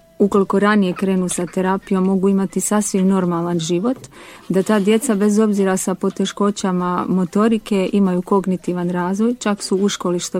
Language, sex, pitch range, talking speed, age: Croatian, female, 180-205 Hz, 150 wpm, 40-59